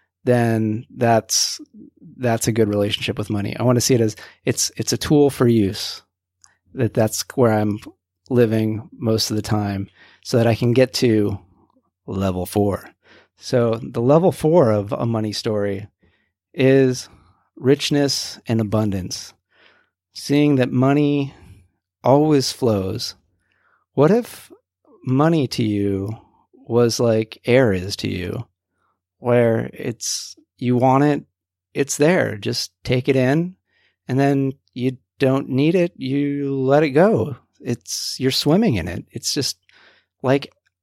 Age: 40-59